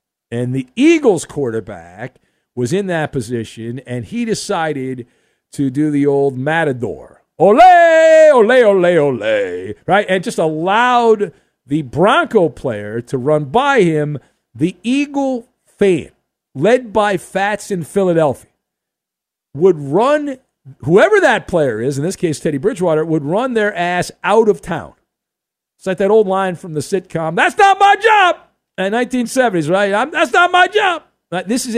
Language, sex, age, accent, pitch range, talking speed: English, male, 50-69, American, 155-235 Hz, 145 wpm